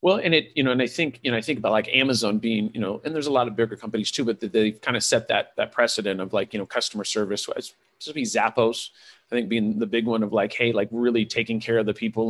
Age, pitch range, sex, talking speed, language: 40-59, 110-130 Hz, male, 295 wpm, English